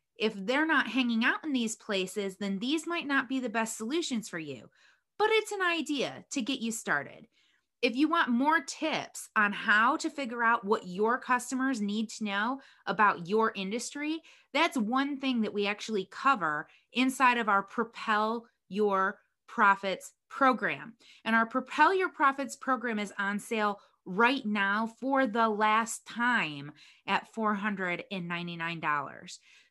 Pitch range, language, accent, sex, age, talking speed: 205-285 Hz, English, American, female, 20-39, 155 wpm